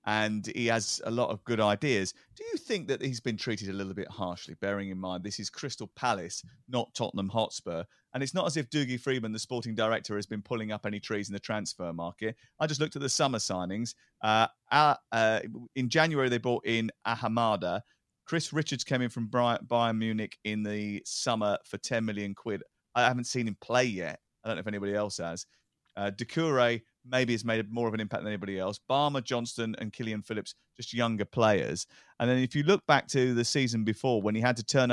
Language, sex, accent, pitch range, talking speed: English, male, British, 105-135 Hz, 220 wpm